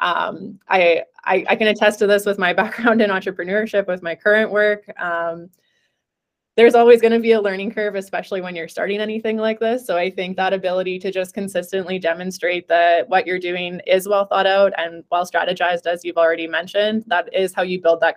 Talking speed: 210 wpm